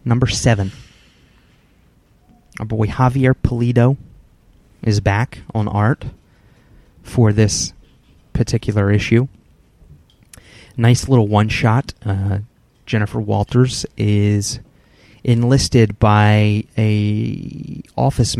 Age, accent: 30-49, American